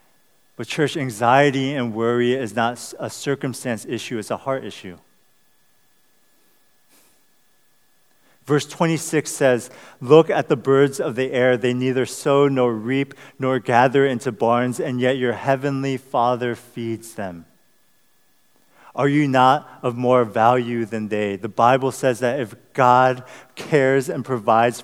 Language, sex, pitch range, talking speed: English, male, 110-135 Hz, 140 wpm